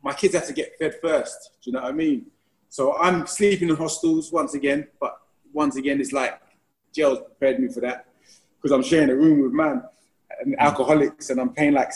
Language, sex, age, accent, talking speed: English, male, 20-39, British, 215 wpm